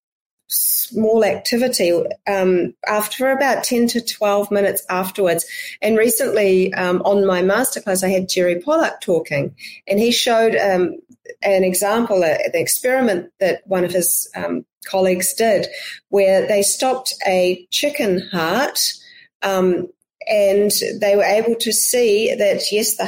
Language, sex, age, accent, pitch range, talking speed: English, female, 40-59, Australian, 190-260 Hz, 135 wpm